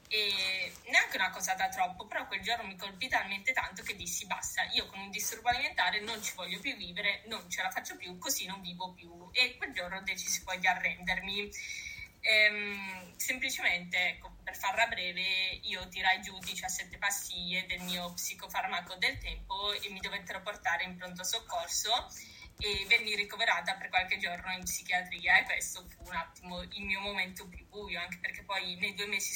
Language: Italian